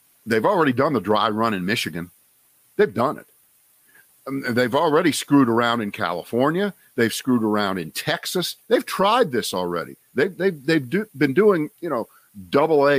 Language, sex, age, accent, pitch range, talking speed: English, male, 50-69, American, 105-155 Hz, 150 wpm